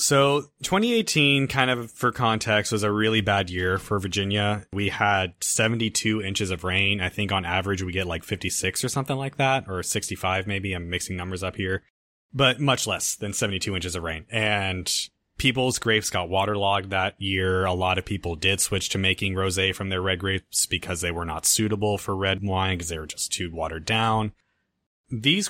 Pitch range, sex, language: 95-120 Hz, male, English